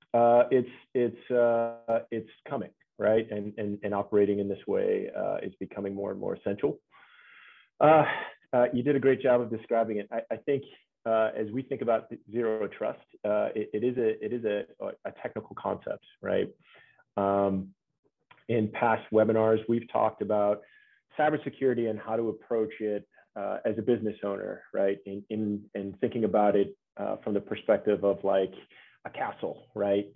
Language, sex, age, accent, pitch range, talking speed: English, male, 30-49, American, 100-115 Hz, 170 wpm